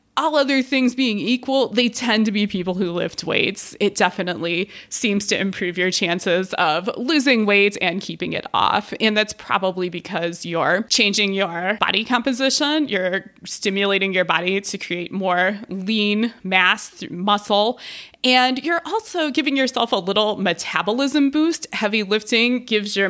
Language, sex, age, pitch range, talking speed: English, female, 20-39, 190-255 Hz, 155 wpm